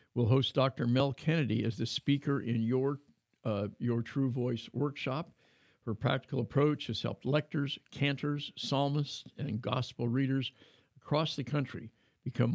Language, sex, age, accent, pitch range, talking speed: English, male, 60-79, American, 120-145 Hz, 145 wpm